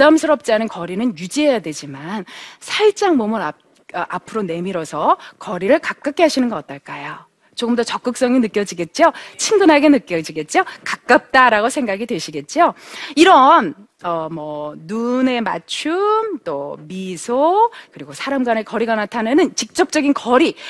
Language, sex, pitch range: Korean, female, 195-295 Hz